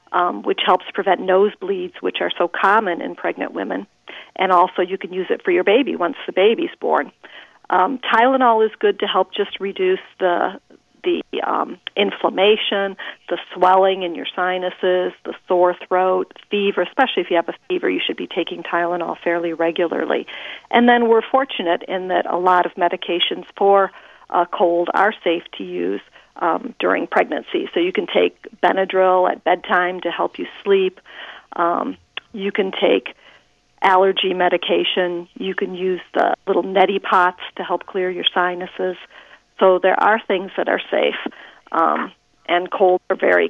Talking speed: 165 wpm